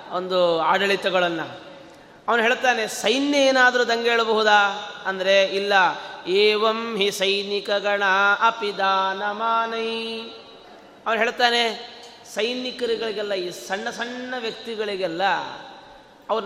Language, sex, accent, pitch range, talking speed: Kannada, male, native, 200-250 Hz, 90 wpm